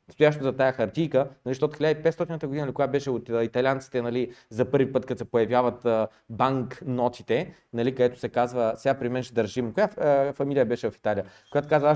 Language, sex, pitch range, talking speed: Bulgarian, male, 130-165 Hz, 195 wpm